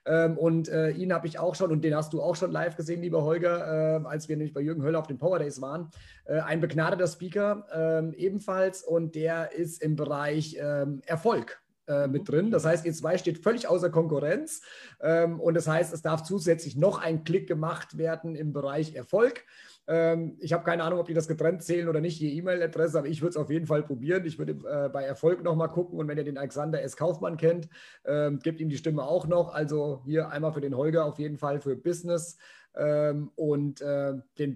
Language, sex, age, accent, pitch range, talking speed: German, male, 30-49, German, 150-175 Hz, 215 wpm